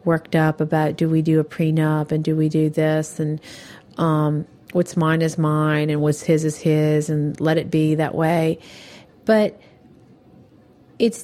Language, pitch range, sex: English, 150-170 Hz, female